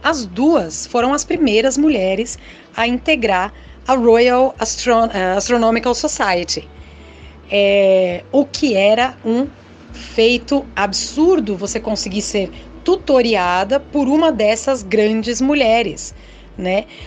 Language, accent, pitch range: Portuguese, Brazilian, 210-275 Hz